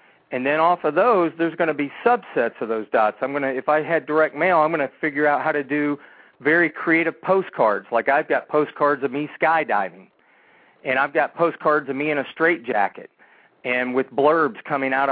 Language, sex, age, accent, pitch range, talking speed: English, male, 40-59, American, 130-160 Hz, 215 wpm